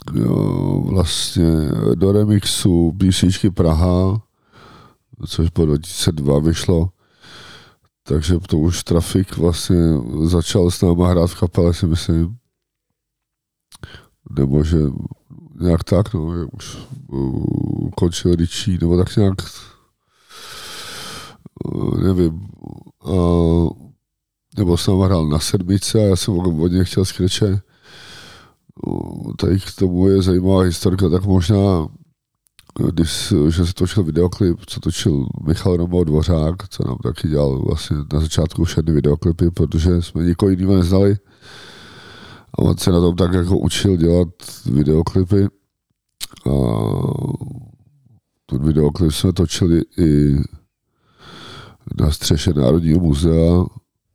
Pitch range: 80-100 Hz